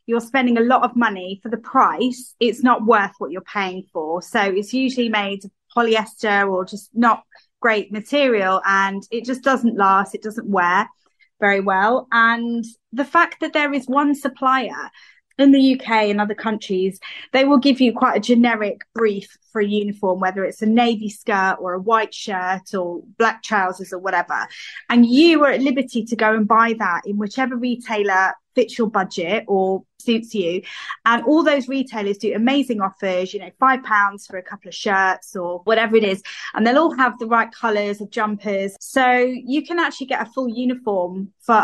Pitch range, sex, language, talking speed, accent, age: 205-260 Hz, female, English, 190 wpm, British, 20-39